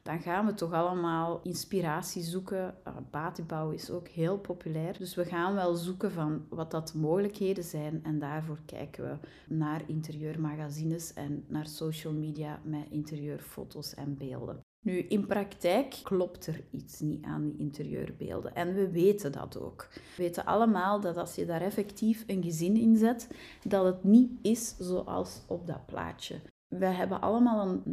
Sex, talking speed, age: female, 165 wpm, 30-49